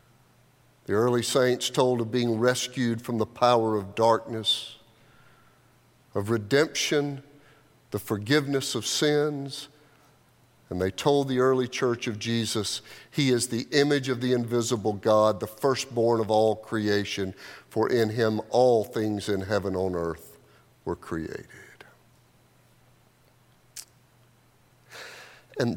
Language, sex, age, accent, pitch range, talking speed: English, male, 50-69, American, 115-145 Hz, 120 wpm